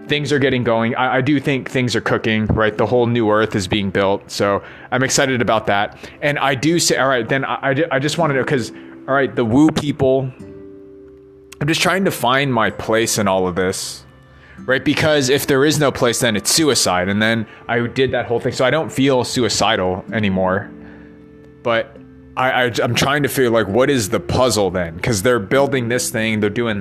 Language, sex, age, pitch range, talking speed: English, male, 30-49, 100-130 Hz, 220 wpm